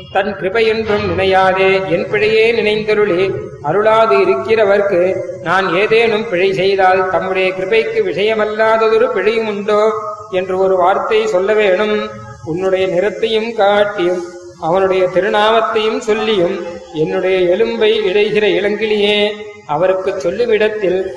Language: Tamil